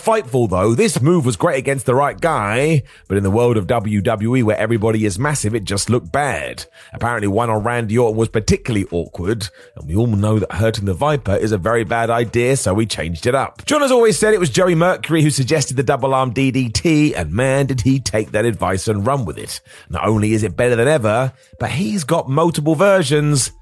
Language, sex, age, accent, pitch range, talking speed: English, male, 30-49, British, 110-150 Hz, 220 wpm